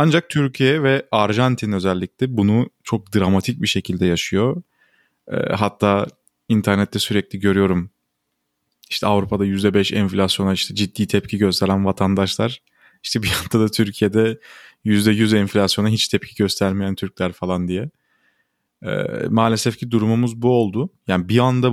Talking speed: 130 wpm